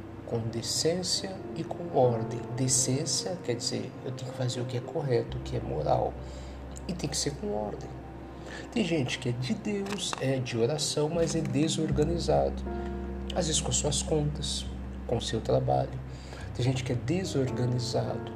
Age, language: 50-69, Portuguese